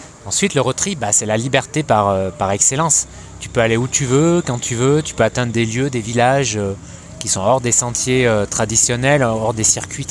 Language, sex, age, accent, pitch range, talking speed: French, male, 20-39, French, 105-130 Hz, 225 wpm